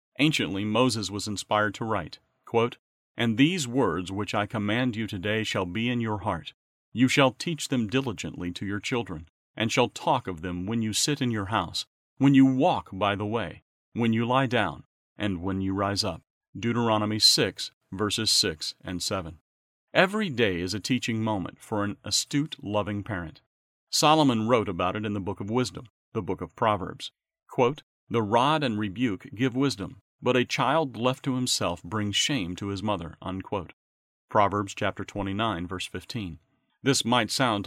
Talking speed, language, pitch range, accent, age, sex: 175 wpm, English, 100-130 Hz, American, 40-59, male